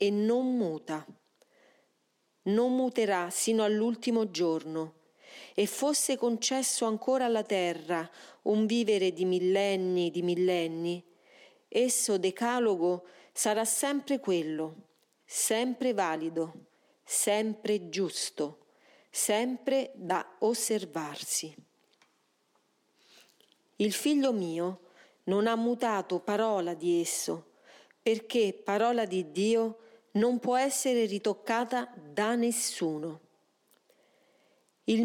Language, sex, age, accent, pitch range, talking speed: Italian, female, 40-59, native, 180-235 Hz, 90 wpm